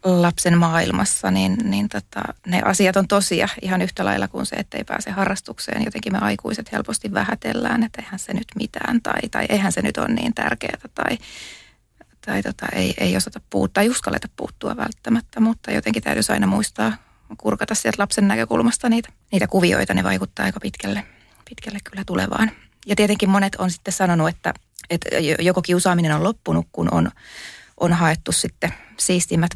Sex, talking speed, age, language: female, 170 wpm, 30-49, Finnish